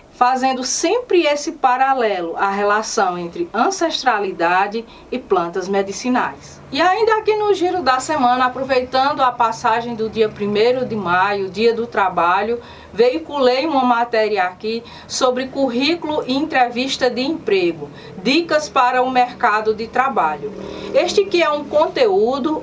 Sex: female